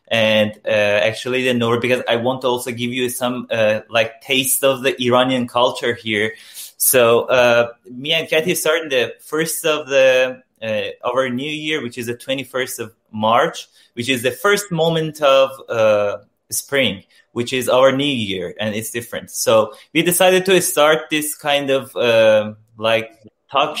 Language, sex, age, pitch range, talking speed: Italian, male, 20-39, 120-155 Hz, 175 wpm